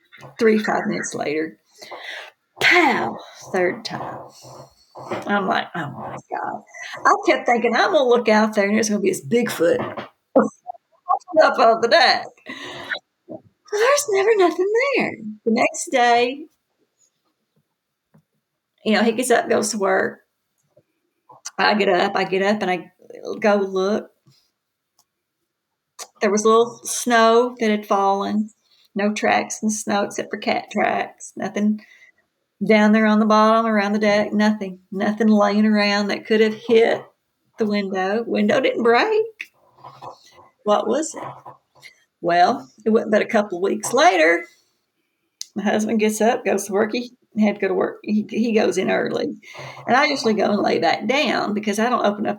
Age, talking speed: 50-69, 160 wpm